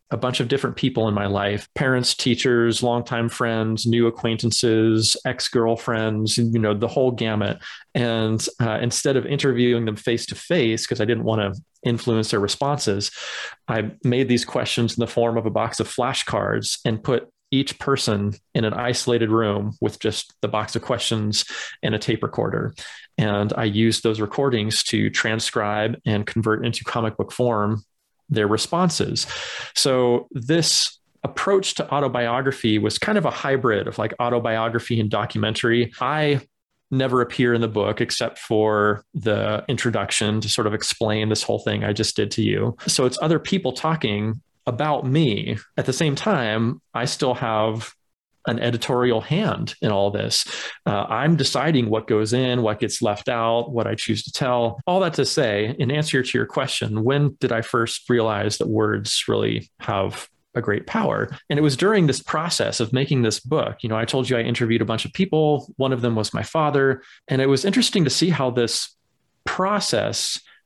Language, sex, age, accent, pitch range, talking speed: English, male, 30-49, American, 110-135 Hz, 175 wpm